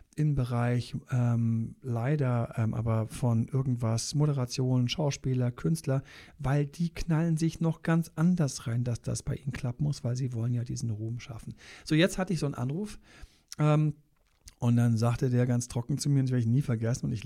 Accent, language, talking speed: German, German, 195 wpm